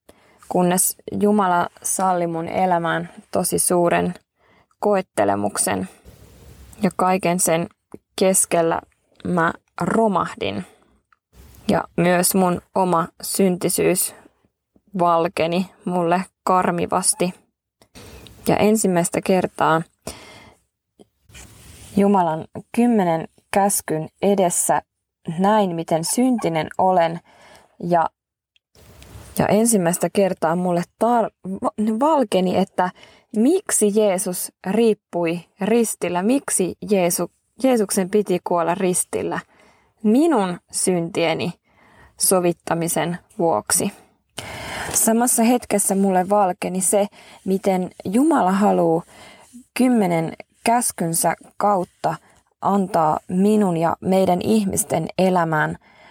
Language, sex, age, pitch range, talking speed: Finnish, female, 20-39, 175-210 Hz, 75 wpm